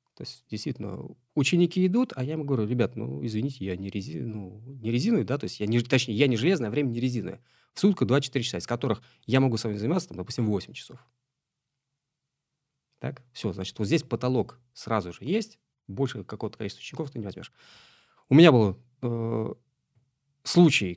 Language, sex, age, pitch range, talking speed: Russian, male, 30-49, 105-135 Hz, 185 wpm